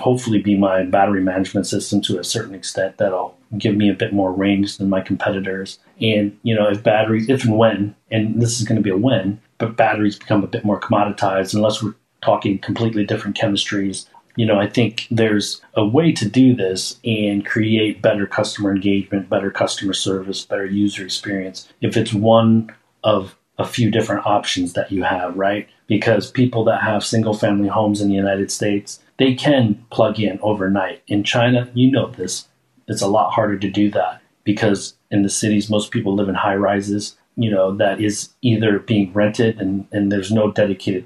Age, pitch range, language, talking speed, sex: 30-49, 100-110 Hz, English, 195 wpm, male